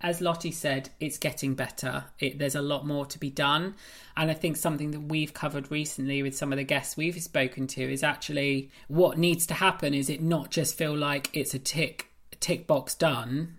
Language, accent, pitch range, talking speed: English, British, 140-165 Hz, 210 wpm